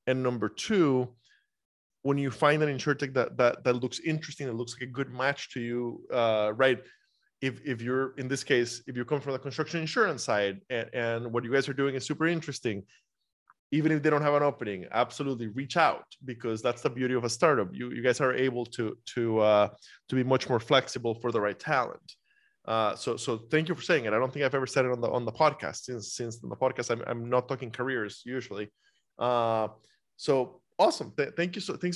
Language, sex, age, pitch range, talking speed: English, male, 20-39, 120-145 Hz, 225 wpm